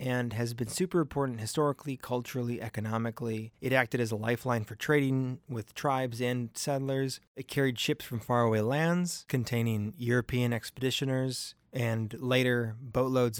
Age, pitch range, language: 20-39, 115-145 Hz, English